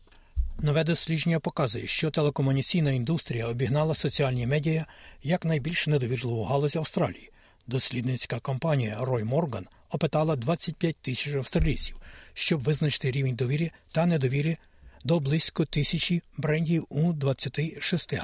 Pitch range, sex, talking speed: 130-160 Hz, male, 110 wpm